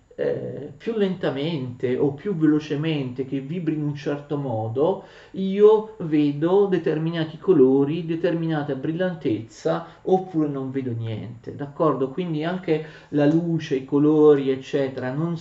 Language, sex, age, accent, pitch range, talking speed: Italian, male, 40-59, native, 130-165 Hz, 115 wpm